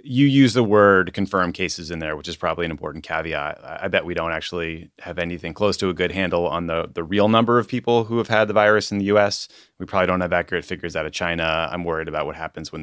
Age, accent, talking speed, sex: 30-49, American, 260 wpm, male